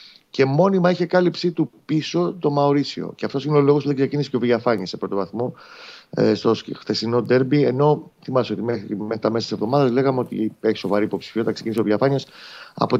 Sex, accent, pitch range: male, native, 110-150 Hz